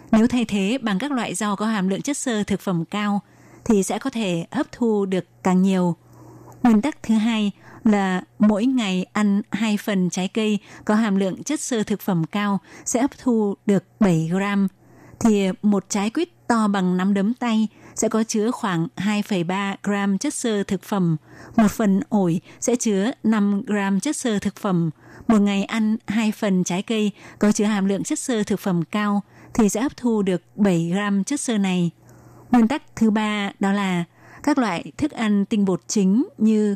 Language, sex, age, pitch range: Vietnamese, female, 20-39, 195-225 Hz